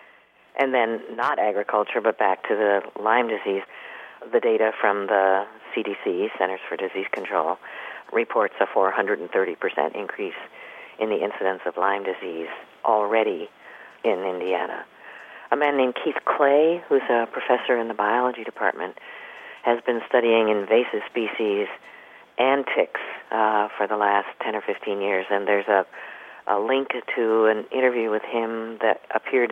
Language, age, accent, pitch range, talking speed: English, 50-69, American, 100-130 Hz, 145 wpm